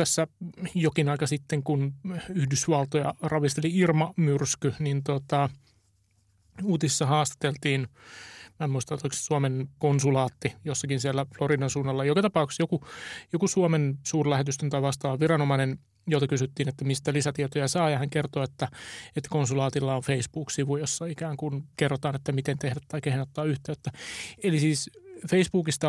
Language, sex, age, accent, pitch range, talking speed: Finnish, male, 30-49, native, 135-155 Hz, 140 wpm